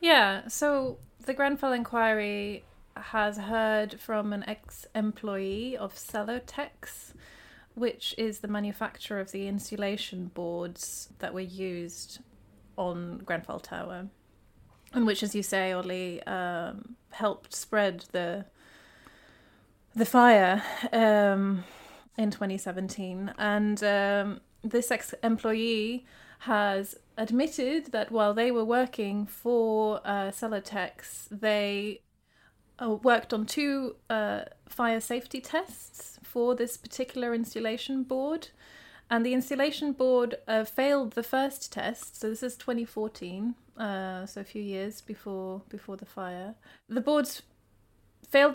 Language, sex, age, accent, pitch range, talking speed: English, female, 30-49, British, 200-240 Hz, 115 wpm